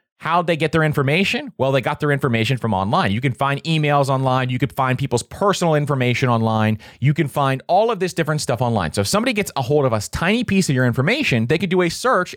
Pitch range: 115-170 Hz